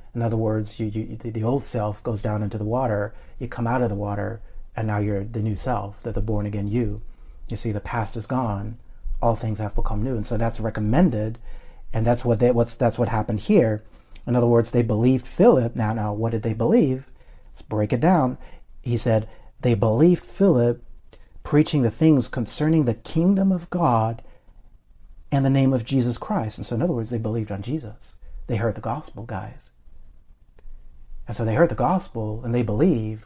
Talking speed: 200 wpm